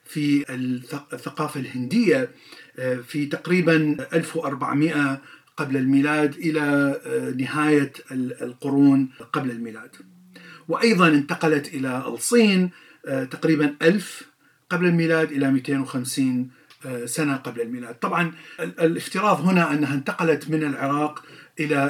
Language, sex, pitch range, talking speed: Arabic, male, 140-175 Hz, 95 wpm